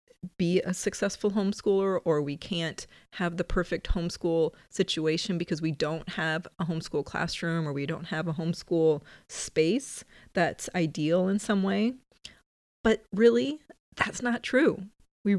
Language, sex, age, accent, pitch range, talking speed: English, female, 30-49, American, 170-215 Hz, 145 wpm